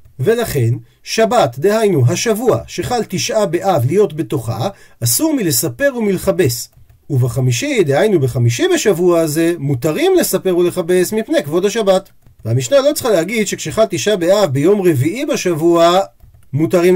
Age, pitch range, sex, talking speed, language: 40-59, 140-225 Hz, male, 120 wpm, Hebrew